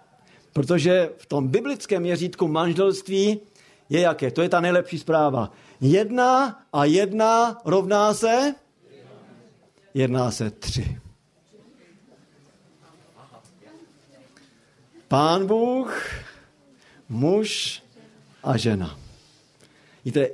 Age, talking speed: 50-69, 80 wpm